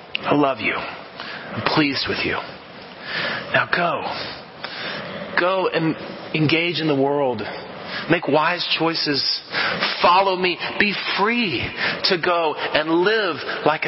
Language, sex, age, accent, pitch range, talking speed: English, male, 30-49, American, 130-170 Hz, 115 wpm